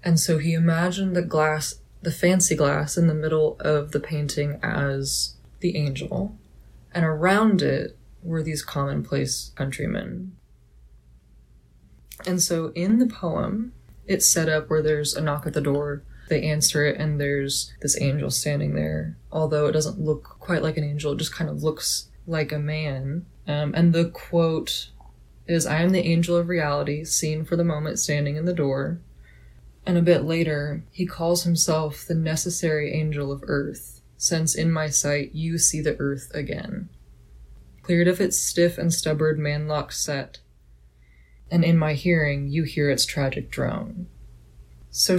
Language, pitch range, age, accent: English, 140-170 Hz, 20-39, American